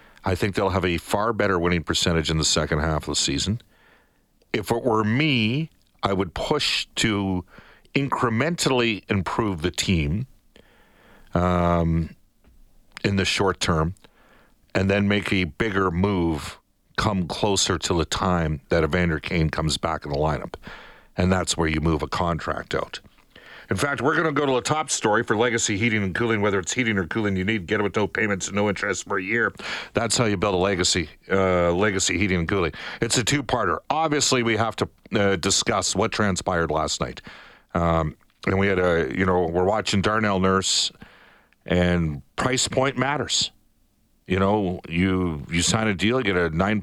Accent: American